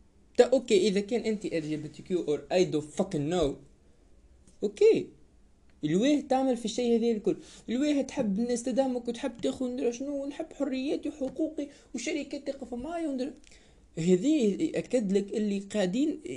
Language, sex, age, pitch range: Arabic, male, 20-39, 140-230 Hz